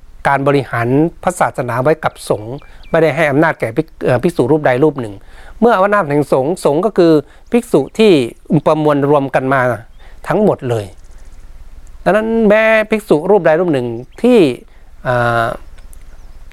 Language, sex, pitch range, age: Thai, male, 120-160 Hz, 60-79